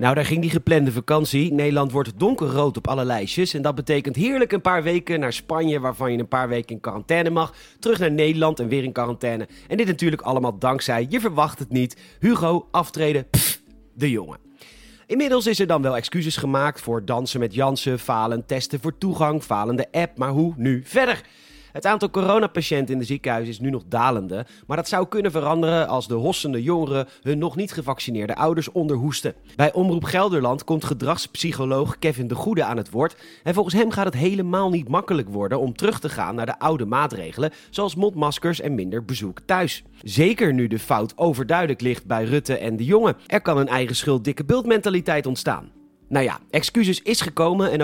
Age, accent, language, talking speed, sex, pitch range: 40-59, Dutch, Dutch, 195 wpm, male, 130-170 Hz